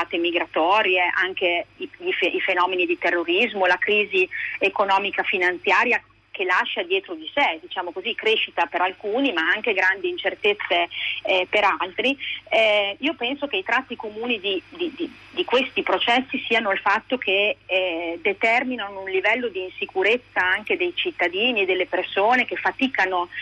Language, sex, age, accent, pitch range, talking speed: Italian, female, 30-49, native, 180-255 Hz, 155 wpm